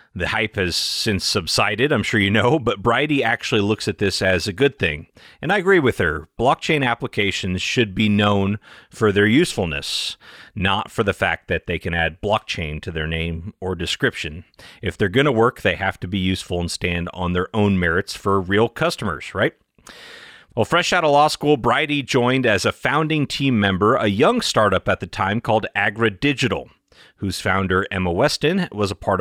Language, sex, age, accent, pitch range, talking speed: English, male, 30-49, American, 95-125 Hz, 195 wpm